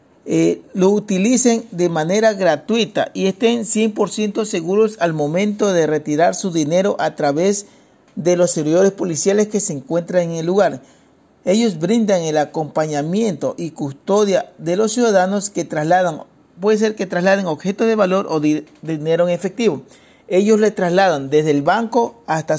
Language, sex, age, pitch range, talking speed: Spanish, male, 50-69, 165-215 Hz, 155 wpm